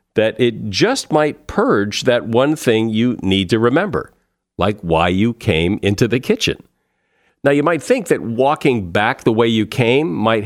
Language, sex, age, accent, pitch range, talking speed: English, male, 50-69, American, 105-135 Hz, 180 wpm